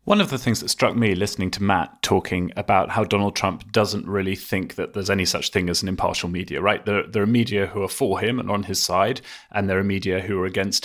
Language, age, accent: English, 30-49, British